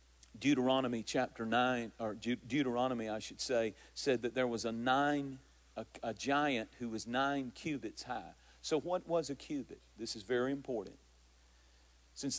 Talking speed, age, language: 155 wpm, 50-69, English